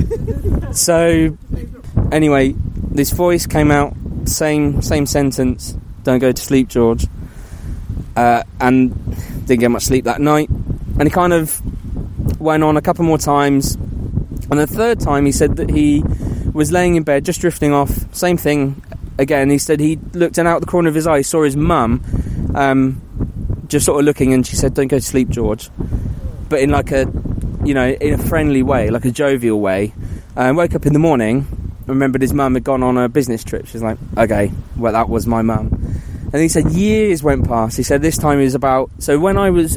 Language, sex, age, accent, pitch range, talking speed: English, male, 20-39, British, 110-145 Hz, 200 wpm